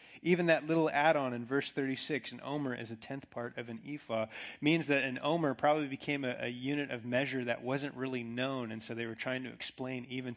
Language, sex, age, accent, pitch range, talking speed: English, male, 30-49, American, 115-135 Hz, 225 wpm